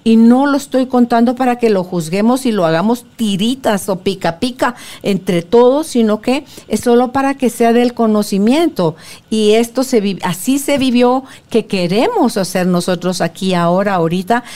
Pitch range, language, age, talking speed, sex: 190-245 Hz, Spanish, 50-69, 160 wpm, female